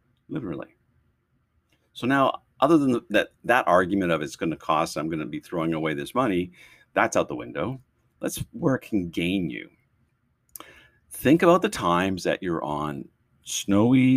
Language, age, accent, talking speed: English, 50-69, American, 165 wpm